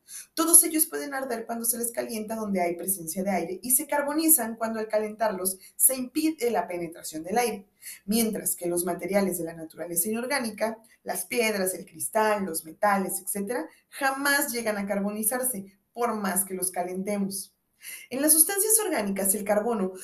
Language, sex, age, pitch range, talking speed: Spanish, female, 20-39, 190-250 Hz, 165 wpm